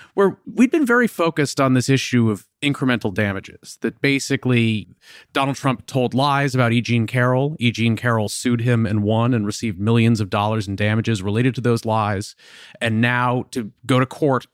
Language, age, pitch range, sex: English, 30-49, 105-130 Hz, male